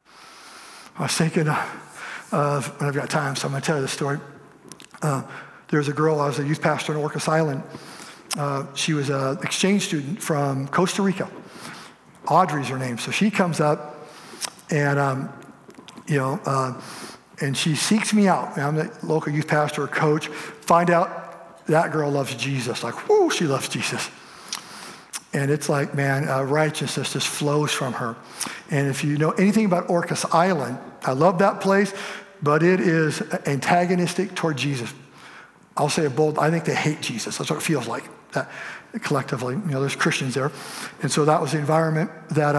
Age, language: 50-69, English